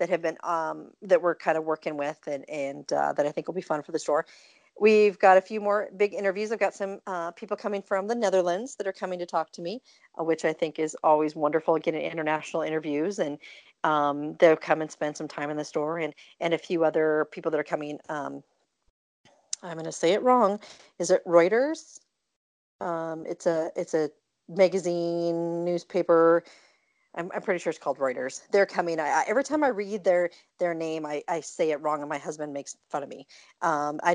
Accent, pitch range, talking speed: American, 155-200 Hz, 215 wpm